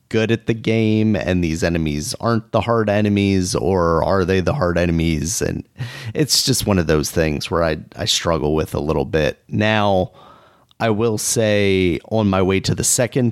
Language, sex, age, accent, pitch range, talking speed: English, male, 30-49, American, 90-110 Hz, 190 wpm